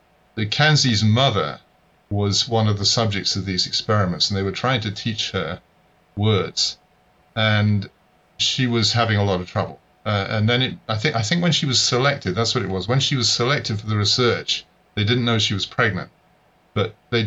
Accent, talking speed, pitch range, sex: British, 200 wpm, 100-120 Hz, male